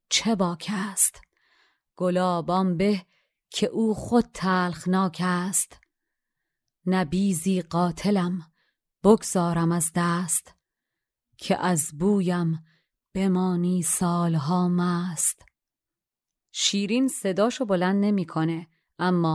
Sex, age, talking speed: female, 30-49, 80 wpm